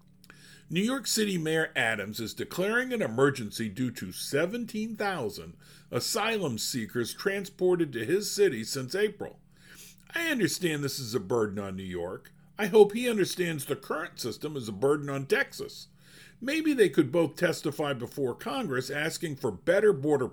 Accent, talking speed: American, 155 wpm